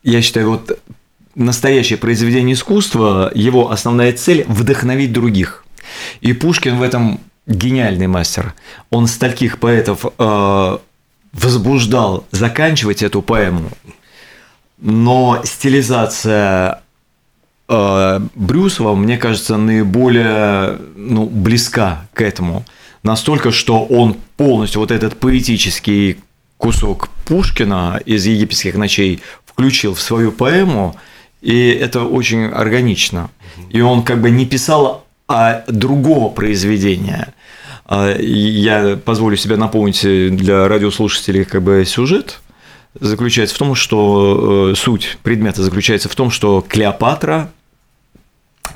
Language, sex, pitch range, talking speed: Russian, male, 100-125 Hz, 105 wpm